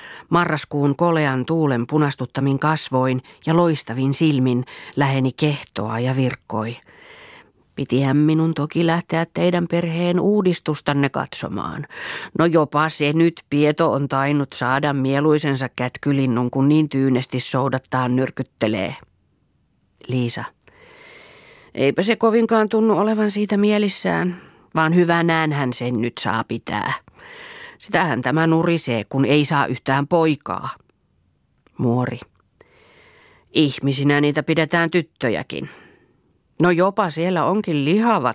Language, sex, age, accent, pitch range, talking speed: Finnish, female, 40-59, native, 130-175 Hz, 110 wpm